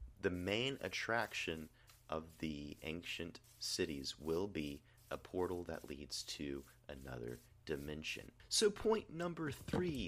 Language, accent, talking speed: English, American, 120 wpm